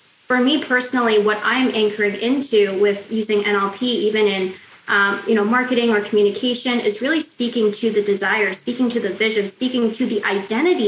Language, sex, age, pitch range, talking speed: English, female, 20-39, 205-240 Hz, 175 wpm